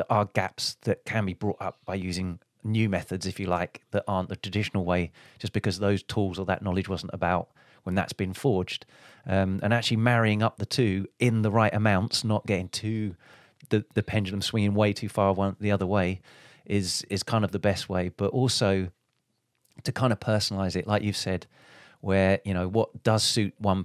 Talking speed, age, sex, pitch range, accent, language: 205 wpm, 30-49, male, 95-110 Hz, British, English